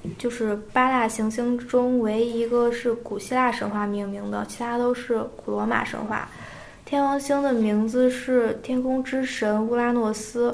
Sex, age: female, 10-29